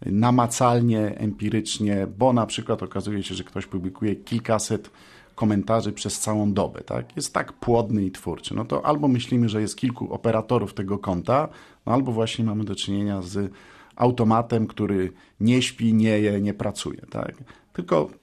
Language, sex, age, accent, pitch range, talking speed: Polish, male, 50-69, native, 100-120 Hz, 160 wpm